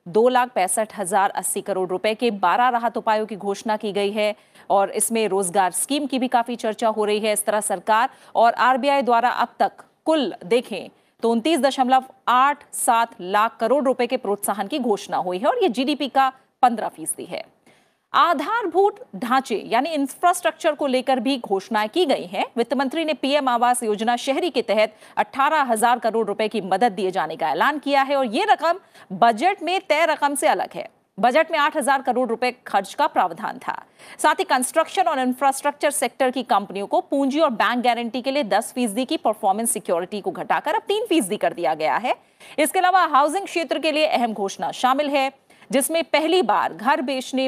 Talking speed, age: 195 wpm, 40-59